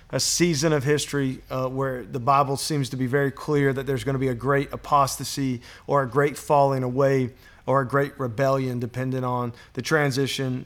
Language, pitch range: English, 125-140 Hz